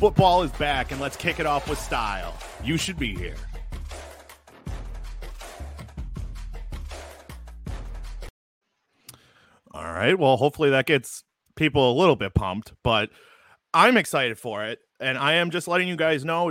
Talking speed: 140 wpm